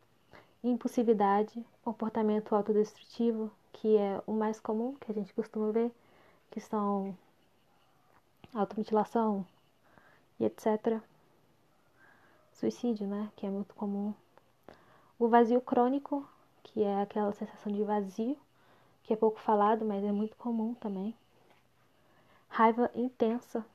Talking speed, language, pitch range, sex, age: 110 wpm, Portuguese, 205-230 Hz, female, 20-39